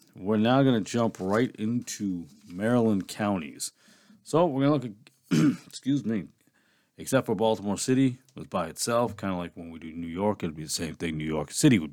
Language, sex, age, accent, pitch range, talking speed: English, male, 40-59, American, 95-140 Hz, 190 wpm